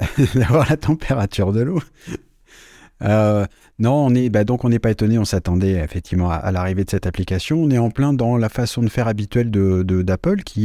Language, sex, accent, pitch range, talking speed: French, male, French, 100-125 Hz, 195 wpm